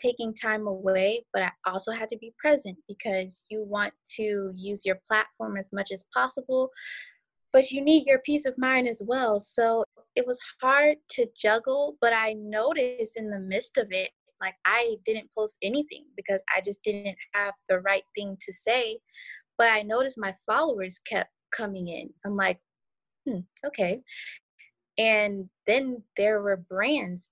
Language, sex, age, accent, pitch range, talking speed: English, female, 20-39, American, 195-245 Hz, 165 wpm